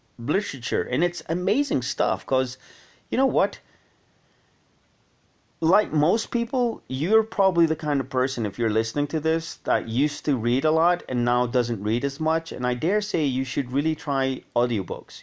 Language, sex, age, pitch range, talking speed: English, male, 30-49, 115-150 Hz, 175 wpm